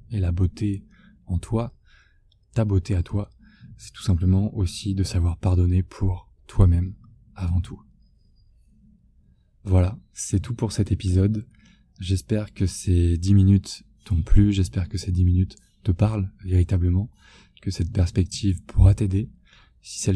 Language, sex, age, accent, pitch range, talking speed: French, male, 20-39, French, 90-105 Hz, 145 wpm